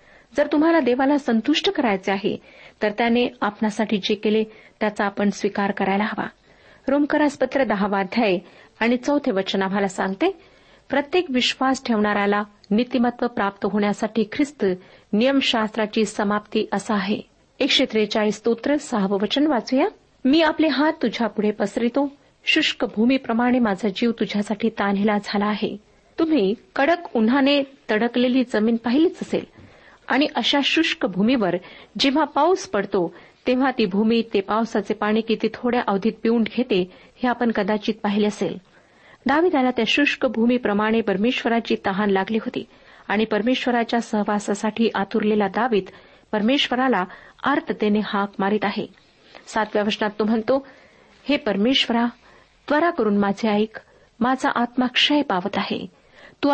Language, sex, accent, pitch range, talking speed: Marathi, female, native, 210-260 Hz, 120 wpm